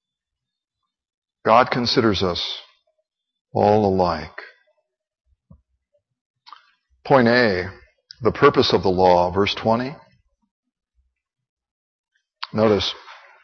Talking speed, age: 65 wpm, 60-79